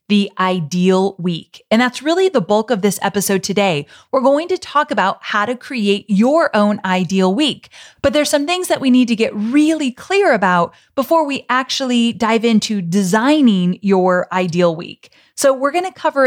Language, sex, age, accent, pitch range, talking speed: English, female, 30-49, American, 195-260 Hz, 185 wpm